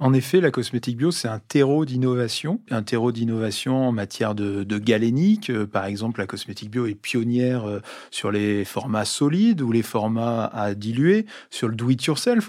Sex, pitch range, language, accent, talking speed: male, 110-135 Hz, French, French, 175 wpm